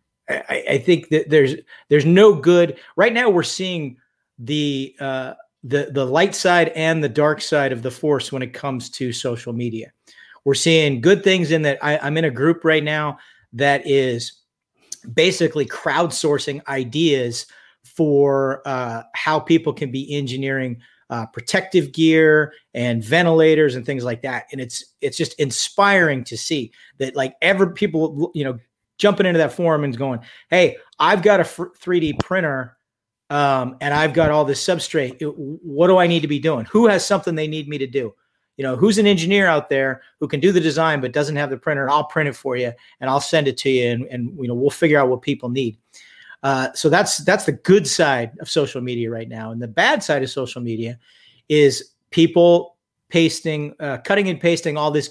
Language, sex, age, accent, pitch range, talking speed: English, male, 40-59, American, 130-165 Hz, 195 wpm